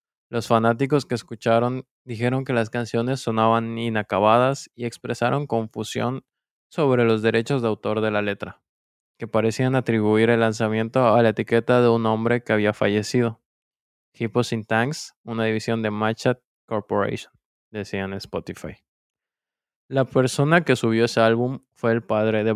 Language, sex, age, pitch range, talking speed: Spanish, male, 20-39, 110-125 Hz, 145 wpm